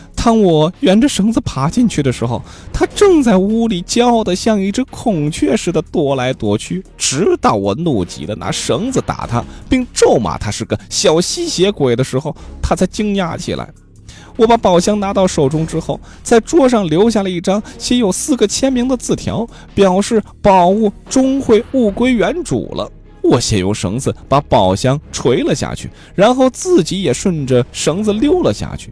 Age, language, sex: 20-39, Chinese, male